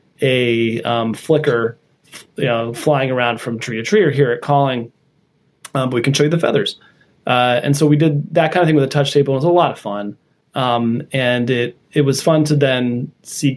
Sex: male